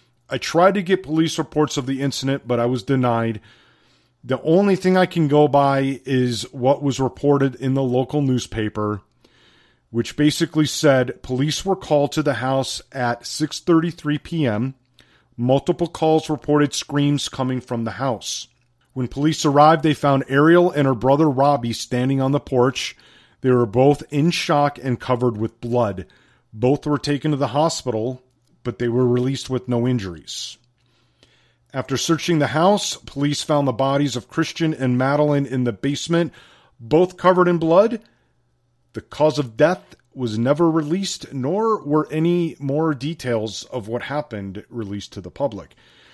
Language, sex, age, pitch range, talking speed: English, male, 40-59, 120-155 Hz, 160 wpm